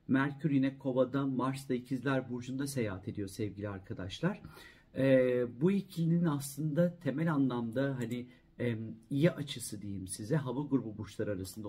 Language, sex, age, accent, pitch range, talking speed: Turkish, male, 50-69, native, 115-145 Hz, 135 wpm